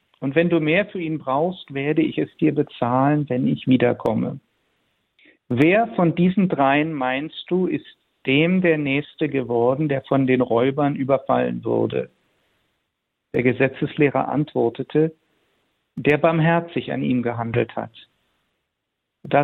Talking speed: 130 wpm